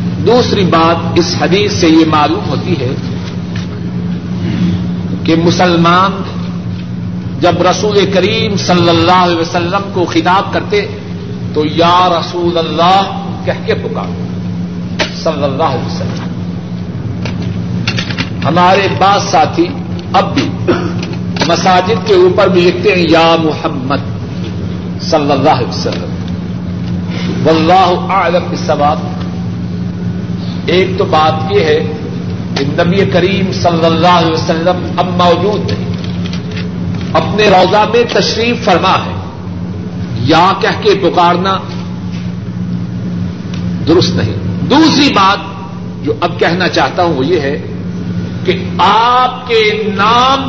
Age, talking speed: 60-79, 110 wpm